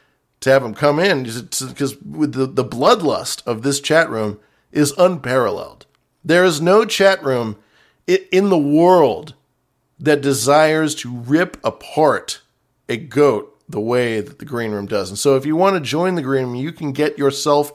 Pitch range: 120-150 Hz